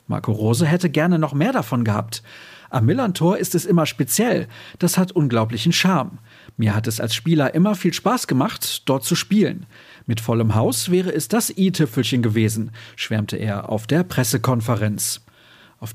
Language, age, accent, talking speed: German, 40-59, German, 165 wpm